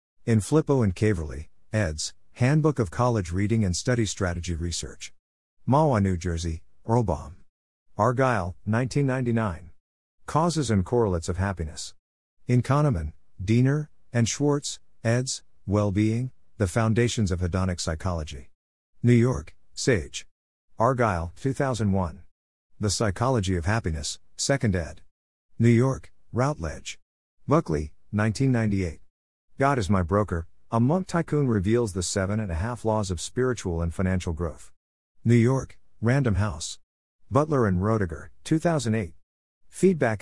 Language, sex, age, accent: English, male, 50-69, American